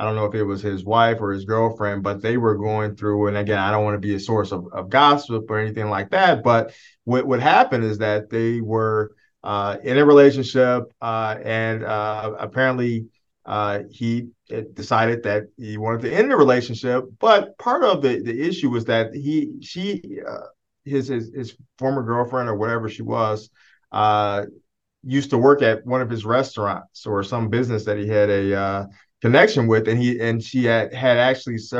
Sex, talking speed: male, 195 wpm